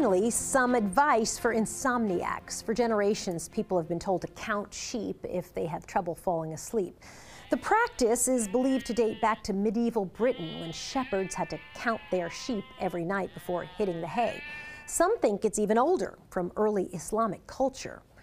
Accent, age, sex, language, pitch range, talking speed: American, 40-59, female, English, 195-270 Hz, 170 wpm